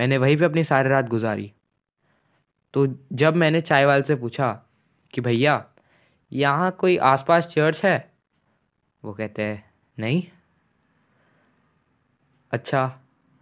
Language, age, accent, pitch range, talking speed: Hindi, 20-39, native, 120-155 Hz, 120 wpm